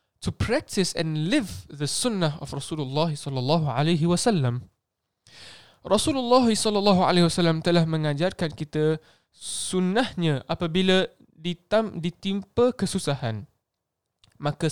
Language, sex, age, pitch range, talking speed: Malay, male, 20-39, 150-190 Hz, 95 wpm